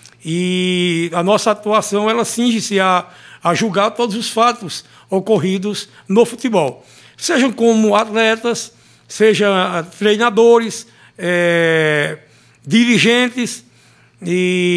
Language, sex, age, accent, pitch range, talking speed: Portuguese, male, 60-79, Brazilian, 175-235 Hz, 95 wpm